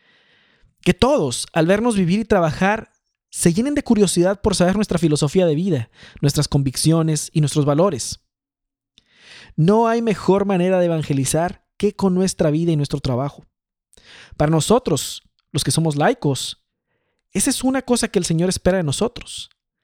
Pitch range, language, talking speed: 150-210 Hz, Spanish, 155 wpm